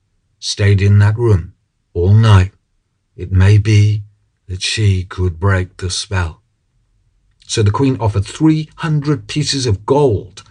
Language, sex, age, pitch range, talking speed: English, male, 50-69, 95-115 Hz, 130 wpm